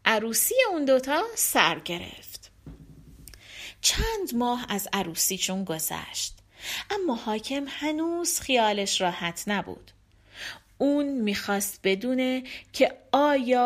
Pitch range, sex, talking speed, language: 205-315 Hz, female, 95 wpm, Persian